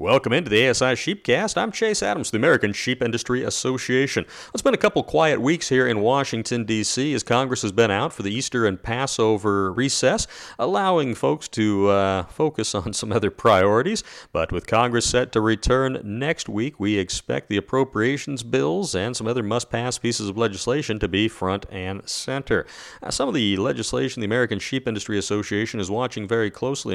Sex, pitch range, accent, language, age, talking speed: male, 100-125 Hz, American, English, 40-59, 185 wpm